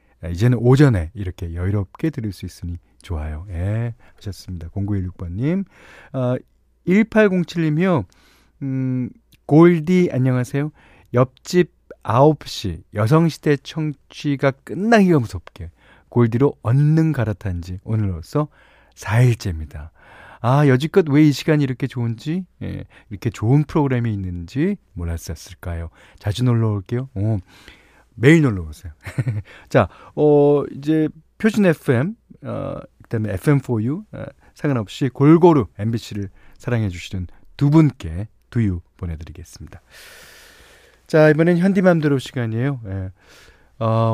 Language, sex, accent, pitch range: Korean, male, native, 95-150 Hz